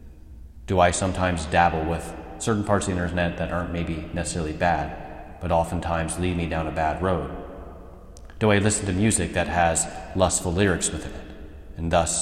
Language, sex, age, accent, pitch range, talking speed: English, male, 30-49, American, 80-90 Hz, 175 wpm